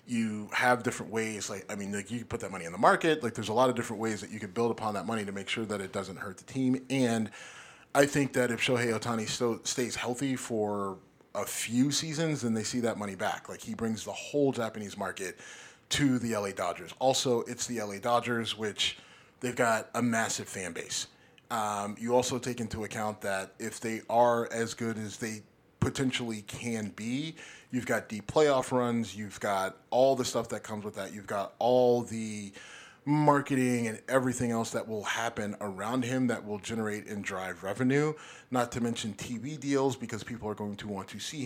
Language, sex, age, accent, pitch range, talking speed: English, male, 30-49, American, 105-125 Hz, 210 wpm